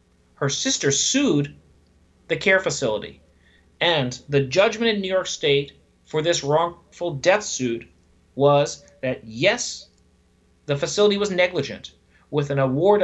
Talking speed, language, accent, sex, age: 130 wpm, English, American, male, 30-49